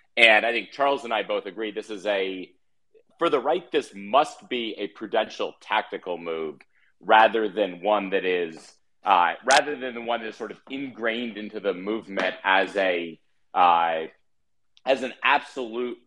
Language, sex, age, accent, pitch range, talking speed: English, male, 30-49, American, 100-125 Hz, 170 wpm